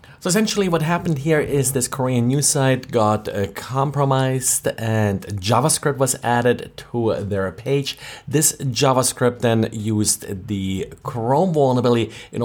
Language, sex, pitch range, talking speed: English, male, 100-135 Hz, 135 wpm